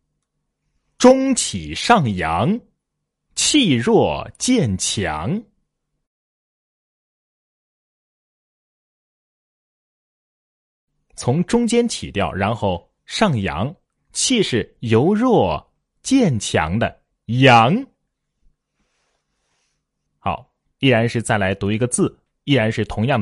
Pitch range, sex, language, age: 95-155 Hz, male, Chinese, 30-49